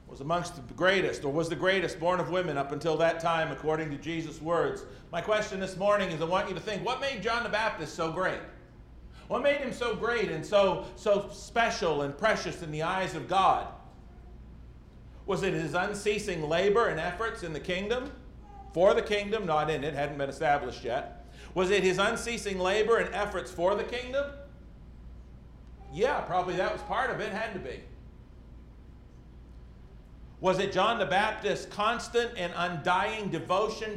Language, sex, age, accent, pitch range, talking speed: English, male, 50-69, American, 160-220 Hz, 180 wpm